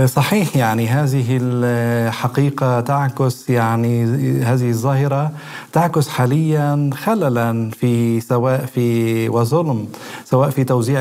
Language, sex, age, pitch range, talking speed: Arabic, male, 40-59, 125-145 Hz, 100 wpm